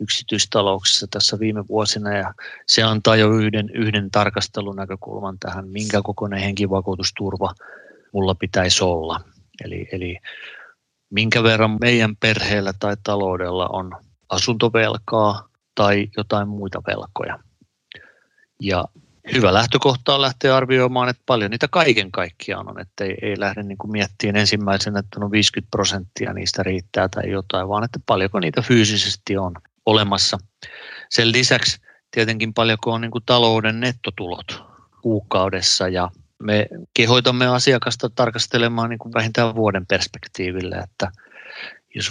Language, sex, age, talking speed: Finnish, male, 30-49, 120 wpm